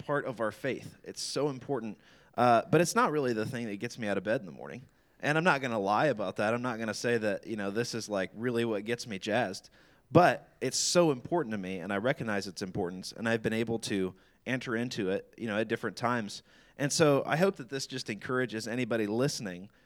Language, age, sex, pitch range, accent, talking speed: English, 20-39, male, 110-130 Hz, American, 245 wpm